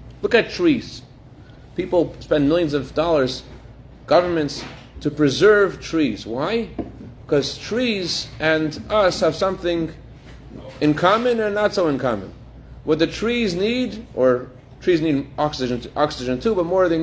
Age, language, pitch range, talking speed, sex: 40-59, English, 150-220 Hz, 135 wpm, male